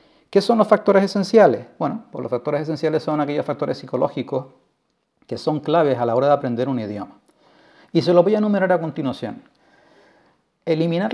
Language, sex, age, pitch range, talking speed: Spanish, male, 40-59, 130-185 Hz, 180 wpm